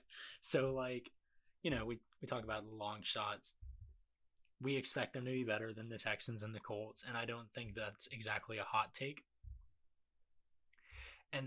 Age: 20-39